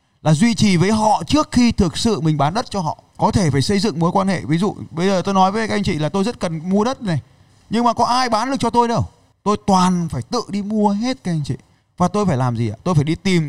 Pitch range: 135-205 Hz